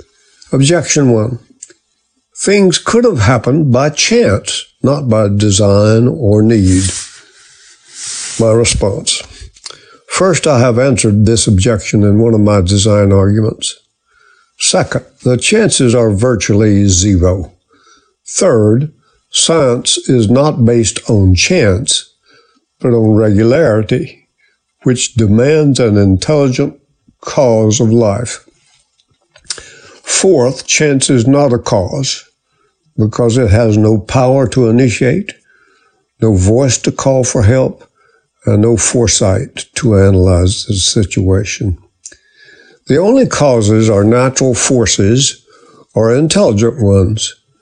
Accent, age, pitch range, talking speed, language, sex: American, 60-79, 105-135 Hz, 105 wpm, English, male